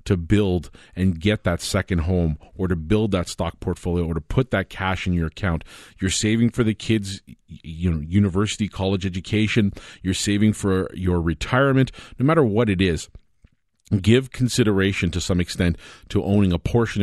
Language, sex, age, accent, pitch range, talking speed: English, male, 40-59, American, 90-110 Hz, 175 wpm